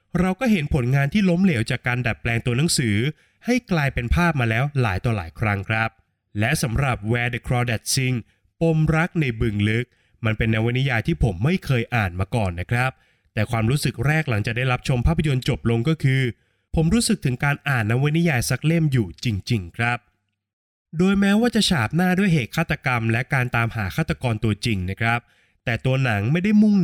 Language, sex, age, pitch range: Thai, male, 20-39, 115-160 Hz